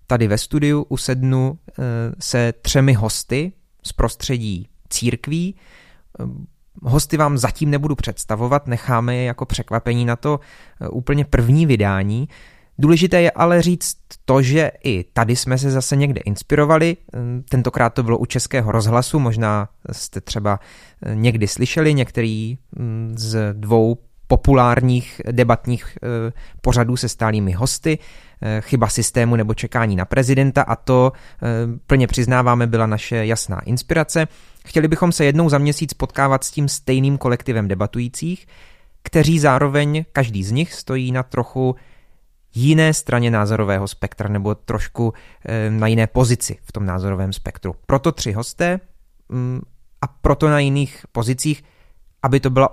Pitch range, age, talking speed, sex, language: 110-140 Hz, 20-39, 130 wpm, male, Czech